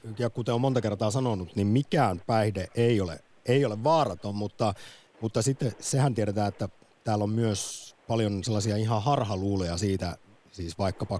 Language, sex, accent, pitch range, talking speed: Finnish, male, native, 95-125 Hz, 160 wpm